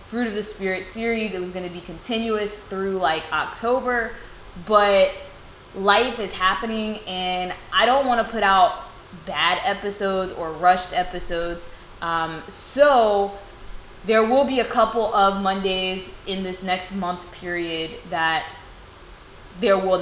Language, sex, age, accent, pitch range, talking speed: English, female, 10-29, American, 170-200 Hz, 140 wpm